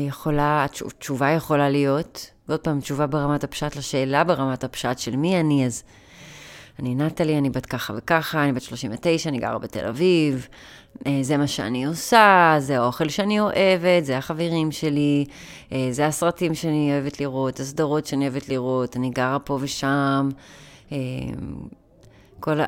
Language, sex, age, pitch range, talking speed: Hebrew, female, 30-49, 130-160 Hz, 145 wpm